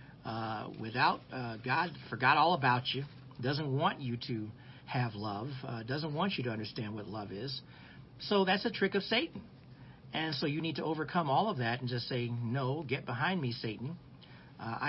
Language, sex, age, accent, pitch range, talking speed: English, male, 50-69, American, 120-155 Hz, 190 wpm